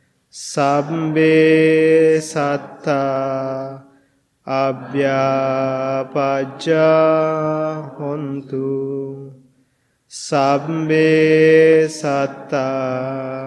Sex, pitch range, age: male, 135-155 Hz, 20-39